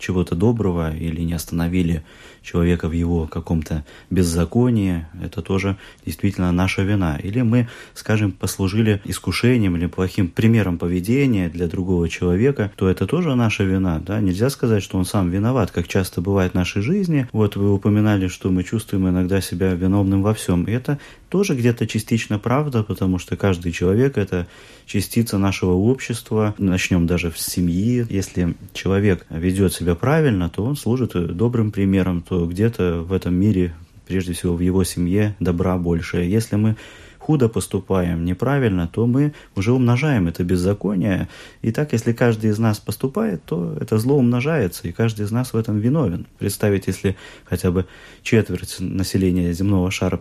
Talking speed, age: 160 wpm, 30-49